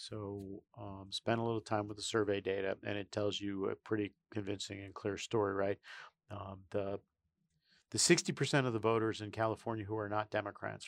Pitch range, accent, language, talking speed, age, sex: 100-130 Hz, American, English, 190 wpm, 40-59, male